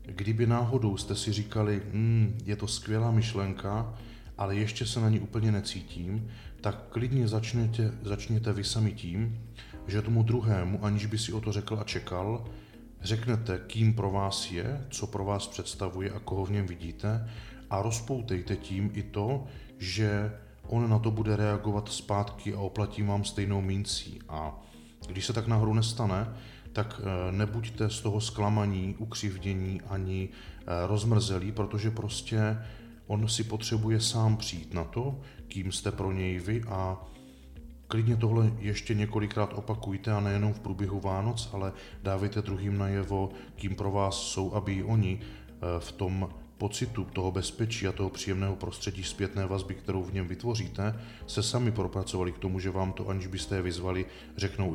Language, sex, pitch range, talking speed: Czech, male, 95-110 Hz, 160 wpm